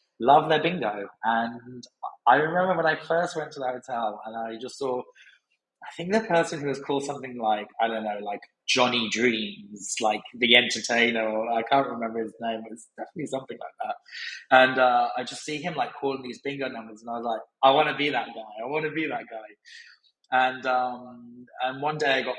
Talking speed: 215 wpm